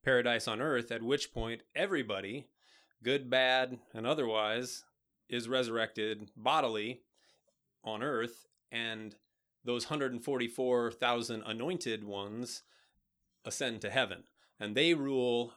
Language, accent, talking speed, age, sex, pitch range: English, American, 105 wpm, 30-49, male, 110-125 Hz